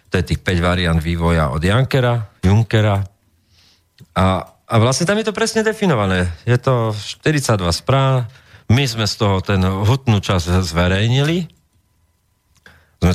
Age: 40-59